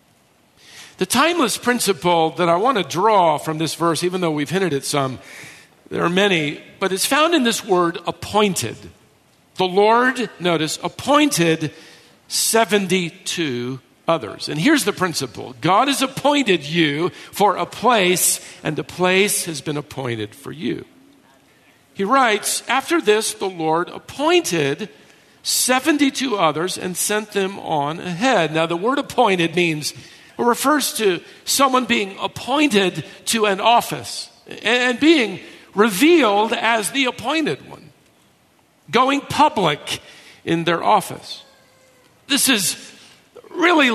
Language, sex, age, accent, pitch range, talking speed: English, male, 50-69, American, 160-255 Hz, 130 wpm